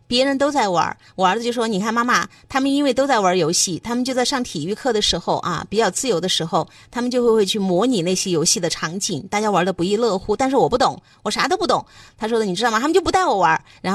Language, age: Chinese, 30-49